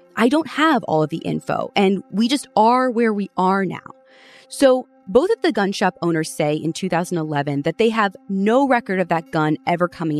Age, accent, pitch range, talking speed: 20-39, American, 155-240 Hz, 205 wpm